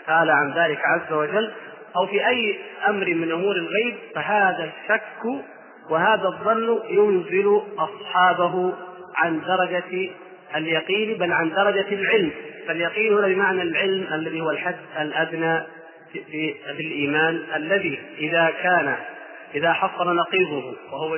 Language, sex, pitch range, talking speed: Arabic, male, 165-210 Hz, 115 wpm